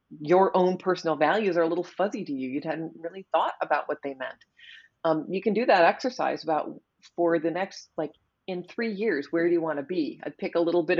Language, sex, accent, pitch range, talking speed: English, female, American, 150-195 Hz, 235 wpm